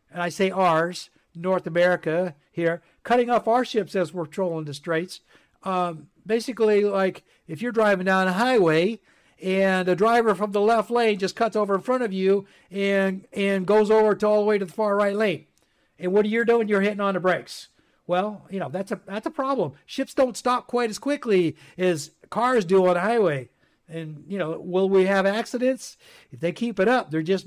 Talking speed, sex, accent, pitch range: 210 wpm, male, American, 175-225 Hz